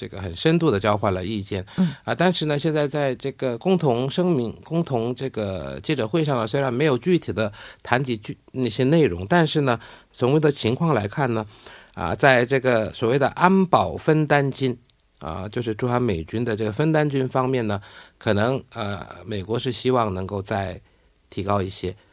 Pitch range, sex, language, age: 105-145 Hz, male, Korean, 50-69